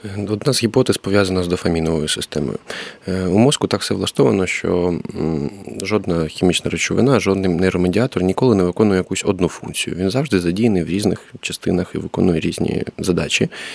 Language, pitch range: Ukrainian, 90-110 Hz